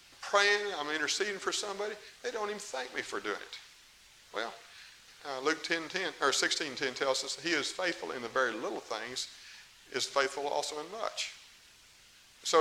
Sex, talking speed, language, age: male, 180 wpm, English, 50-69